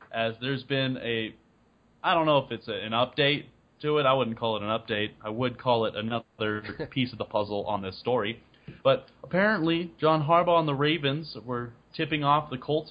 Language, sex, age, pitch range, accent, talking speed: English, male, 30-49, 115-145 Hz, American, 200 wpm